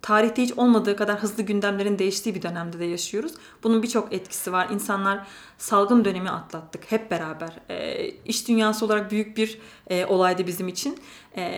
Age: 30-49